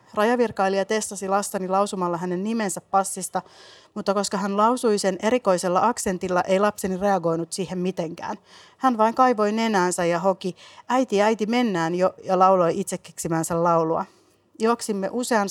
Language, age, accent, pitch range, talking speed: Finnish, 30-49, native, 170-210 Hz, 135 wpm